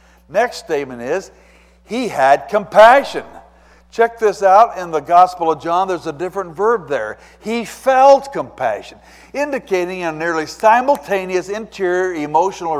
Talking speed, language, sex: 130 wpm, English, male